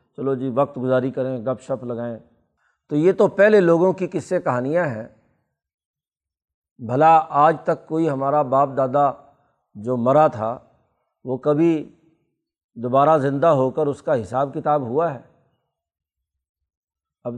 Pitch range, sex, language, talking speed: 125-160 Hz, male, Urdu, 140 wpm